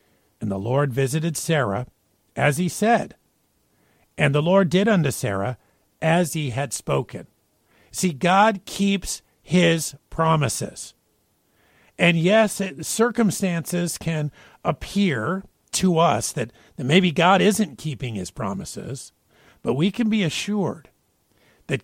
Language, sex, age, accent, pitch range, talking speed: English, male, 50-69, American, 110-180 Hz, 120 wpm